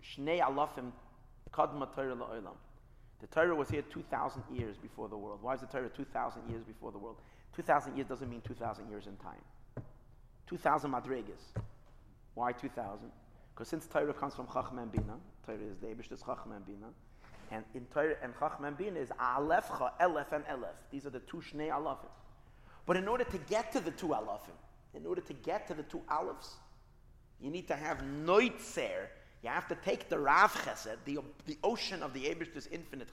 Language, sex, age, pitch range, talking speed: English, male, 30-49, 125-180 Hz, 170 wpm